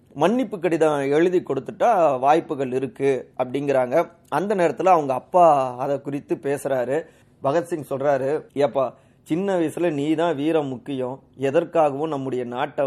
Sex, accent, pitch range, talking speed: male, native, 130-160 Hz, 120 wpm